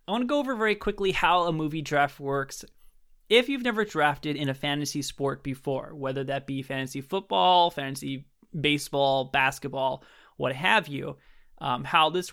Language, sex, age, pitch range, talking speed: English, male, 20-39, 140-185 Hz, 170 wpm